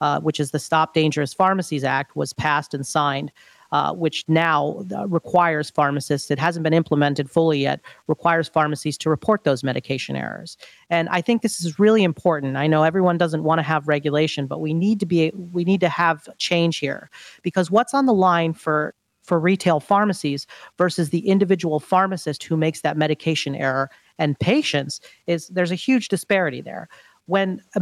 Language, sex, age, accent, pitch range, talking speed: English, female, 40-59, American, 145-180 Hz, 185 wpm